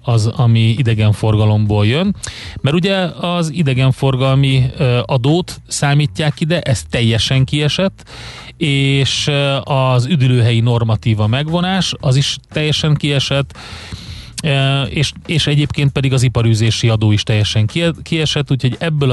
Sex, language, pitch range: male, Hungarian, 115-140 Hz